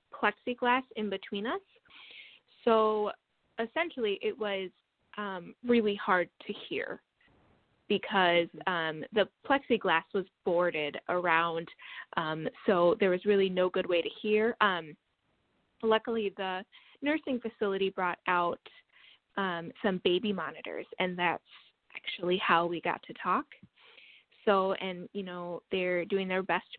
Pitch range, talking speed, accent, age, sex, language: 180-225 Hz, 130 wpm, American, 10-29, female, English